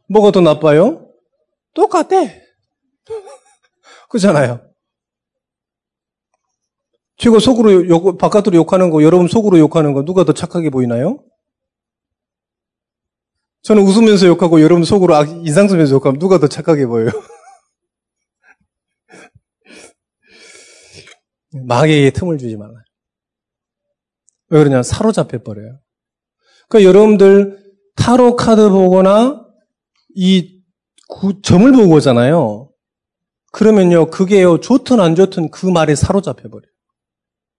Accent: native